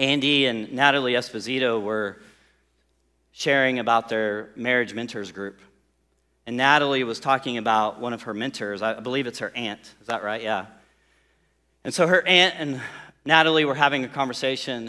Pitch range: 105-160 Hz